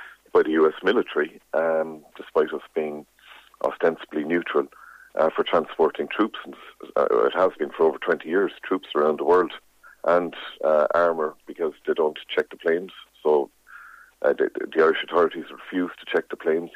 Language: English